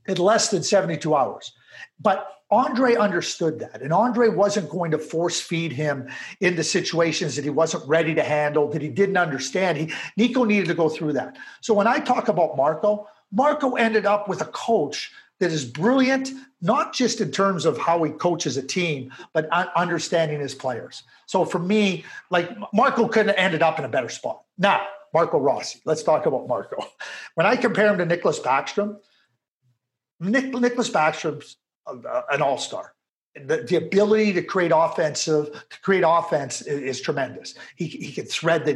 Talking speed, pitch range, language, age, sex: 175 wpm, 155-210 Hz, English, 50-69, male